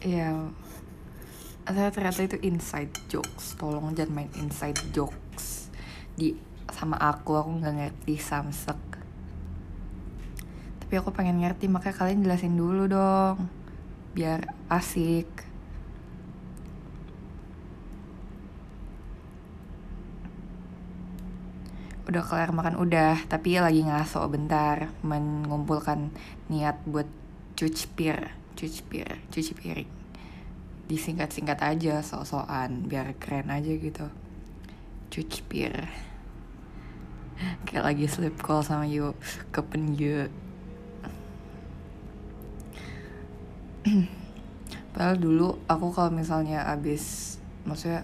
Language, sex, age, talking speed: Malay, female, 20-39, 90 wpm